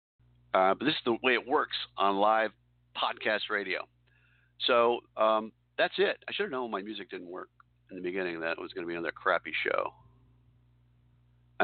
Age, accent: 50-69, American